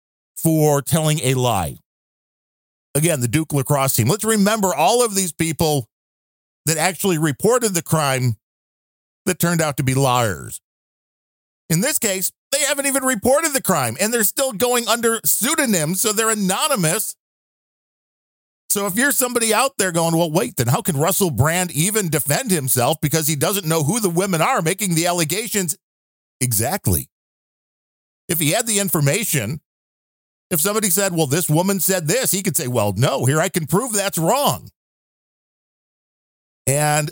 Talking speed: 160 wpm